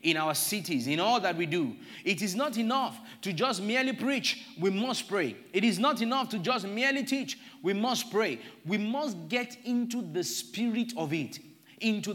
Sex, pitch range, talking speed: male, 145-225 Hz, 195 wpm